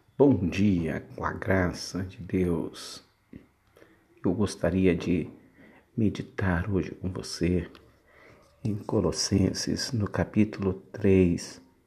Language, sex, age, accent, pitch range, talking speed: Portuguese, male, 60-79, Brazilian, 85-100 Hz, 95 wpm